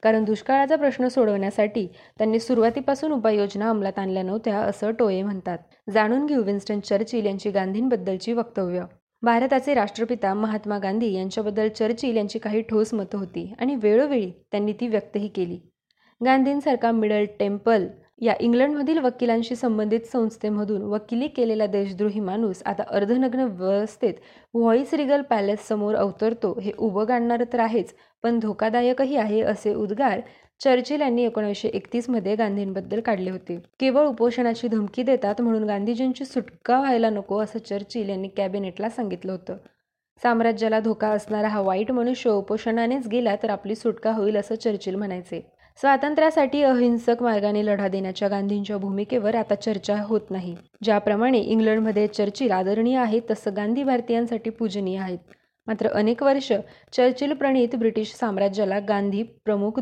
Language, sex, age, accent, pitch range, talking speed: Marathi, female, 20-39, native, 205-240 Hz, 135 wpm